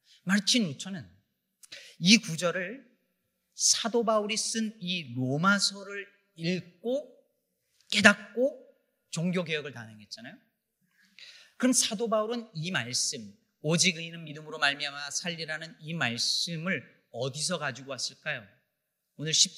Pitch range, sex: 145-205 Hz, male